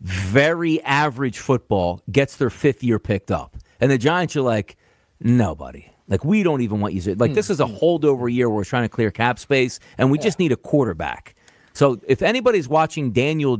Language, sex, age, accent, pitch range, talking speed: English, male, 40-59, American, 110-170 Hz, 205 wpm